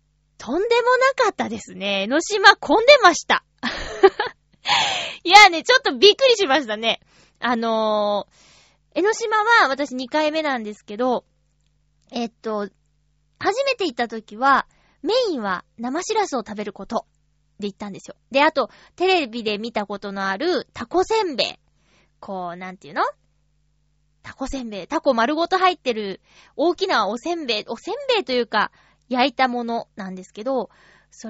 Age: 20-39